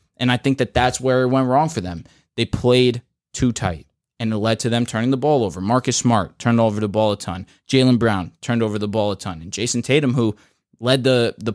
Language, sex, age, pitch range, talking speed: English, male, 20-39, 115-140 Hz, 245 wpm